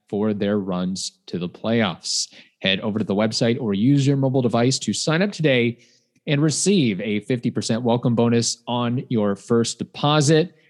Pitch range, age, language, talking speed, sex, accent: 115-160 Hz, 30-49, English, 170 wpm, male, American